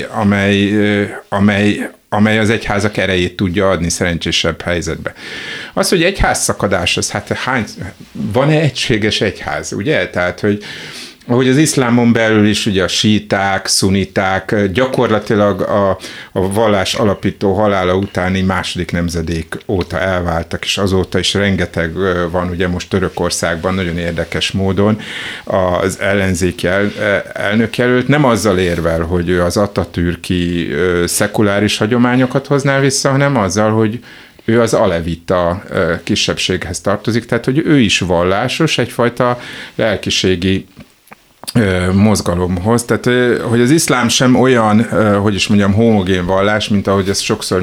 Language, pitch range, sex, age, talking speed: Hungarian, 90-110 Hz, male, 60-79, 120 wpm